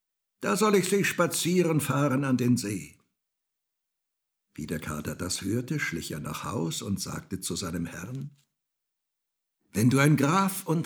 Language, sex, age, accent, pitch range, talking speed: German, male, 60-79, German, 115-155 Hz, 155 wpm